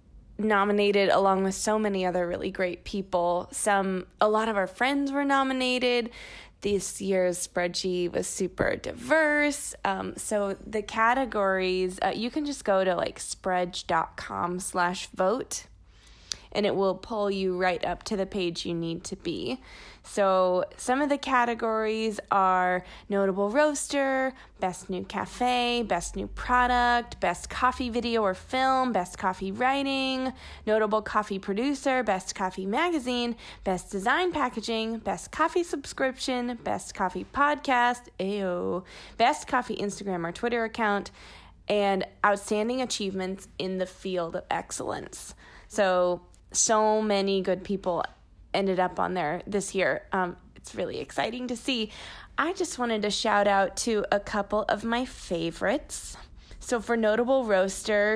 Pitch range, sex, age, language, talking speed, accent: 185-235 Hz, female, 20-39, English, 140 wpm, American